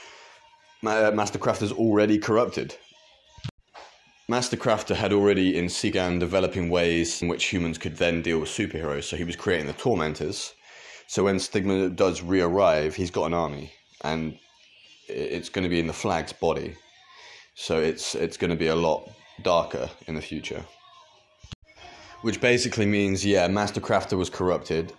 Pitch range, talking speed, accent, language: 85-110 Hz, 155 wpm, British, English